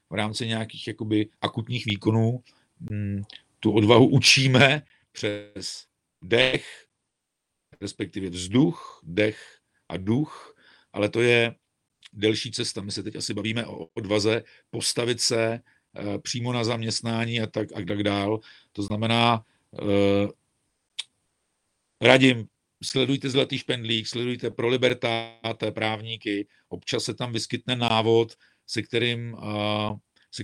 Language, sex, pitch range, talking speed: Czech, male, 105-115 Hz, 115 wpm